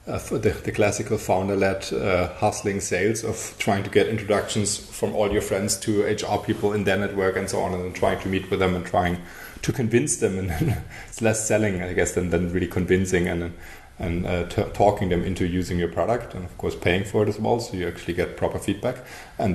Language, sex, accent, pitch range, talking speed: English, male, German, 90-105 Hz, 230 wpm